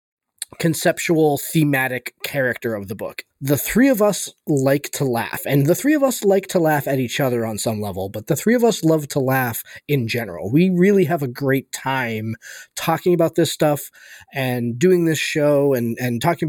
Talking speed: 195 wpm